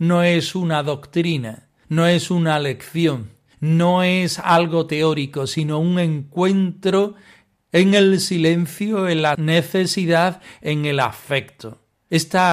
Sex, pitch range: male, 135-180 Hz